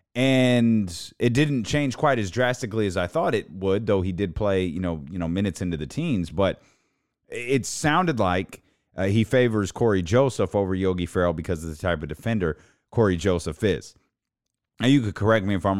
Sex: male